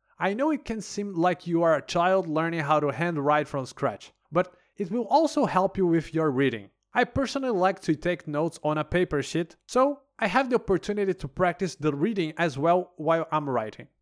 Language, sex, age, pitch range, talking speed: English, male, 30-49, 155-205 Hz, 210 wpm